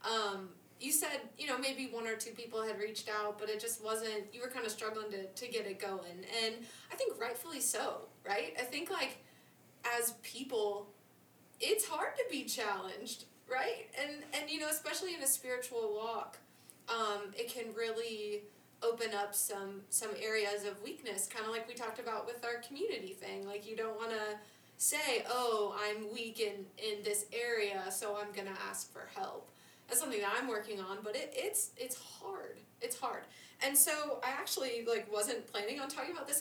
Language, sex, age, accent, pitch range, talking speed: English, female, 20-39, American, 210-270 Hz, 195 wpm